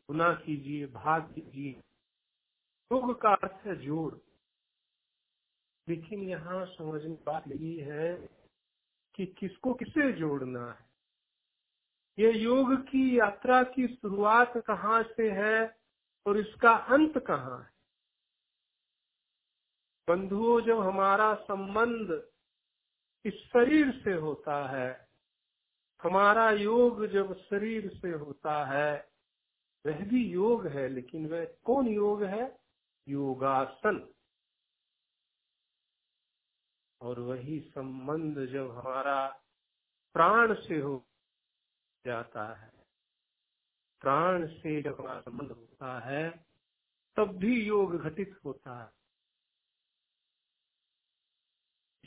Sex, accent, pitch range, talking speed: male, native, 150-225 Hz, 95 wpm